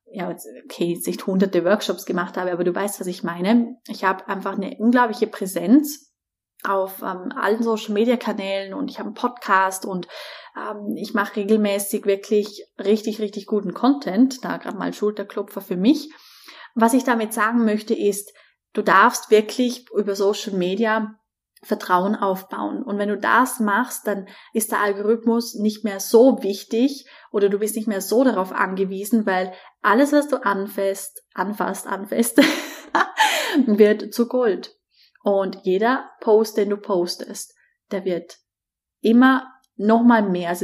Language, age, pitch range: German, 20-39, 195-230 Hz